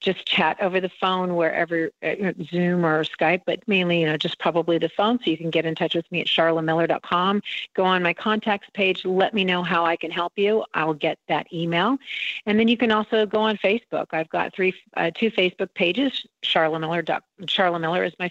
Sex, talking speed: female, 215 wpm